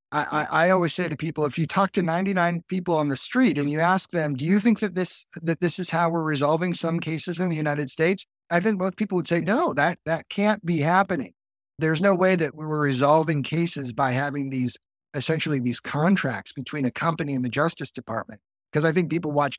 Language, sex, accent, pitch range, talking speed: English, male, American, 145-185 Hz, 225 wpm